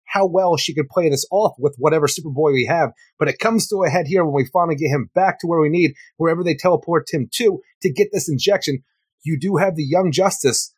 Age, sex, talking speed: 30-49, male, 245 wpm